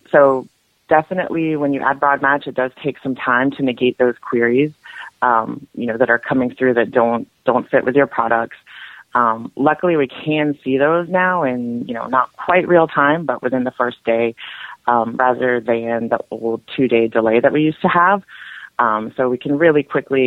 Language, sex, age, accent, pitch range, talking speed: English, female, 30-49, American, 120-140 Hz, 200 wpm